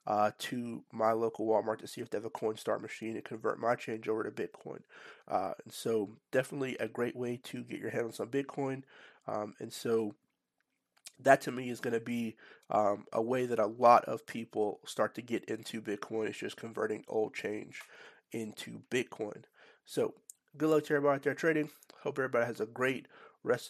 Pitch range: 115-130 Hz